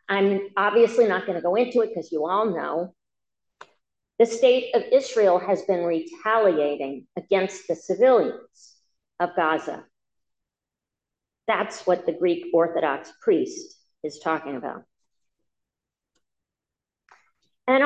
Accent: American